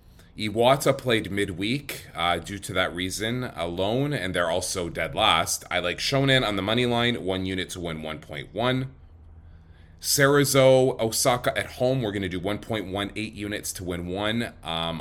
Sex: male